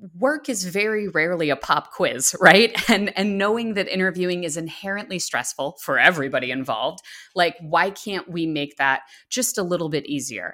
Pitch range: 150-195 Hz